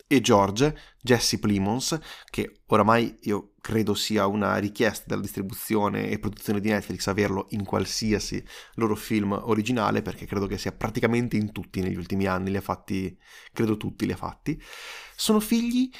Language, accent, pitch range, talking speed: Italian, native, 105-145 Hz, 160 wpm